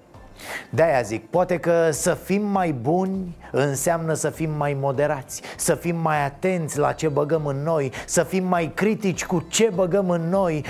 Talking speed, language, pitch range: 175 wpm, Romanian, 140-185 Hz